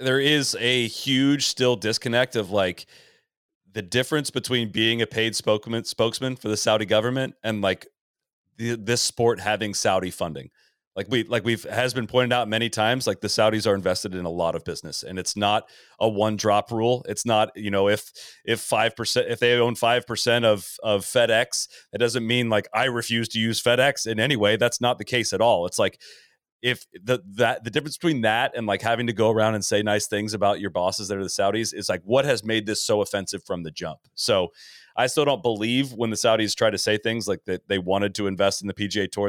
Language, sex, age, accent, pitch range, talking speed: English, male, 30-49, American, 100-120 Hz, 225 wpm